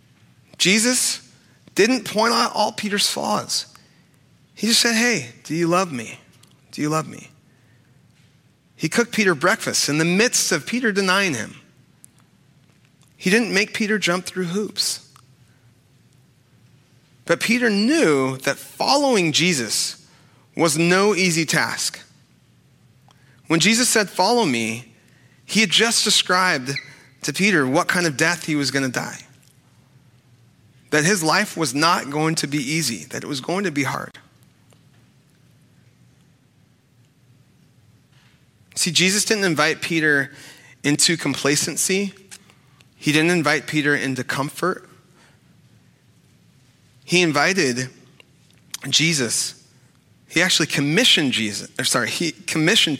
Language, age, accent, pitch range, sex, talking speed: English, 30-49, American, 130-185 Hz, male, 120 wpm